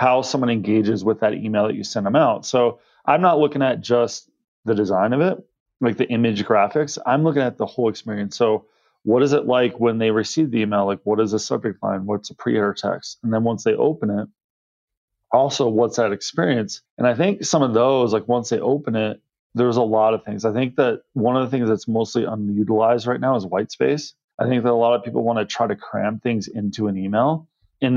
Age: 30-49